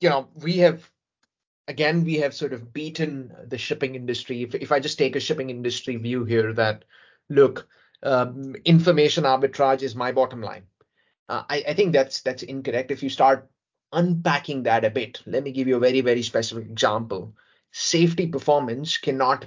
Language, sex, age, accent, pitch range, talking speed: English, male, 30-49, Indian, 125-155 Hz, 180 wpm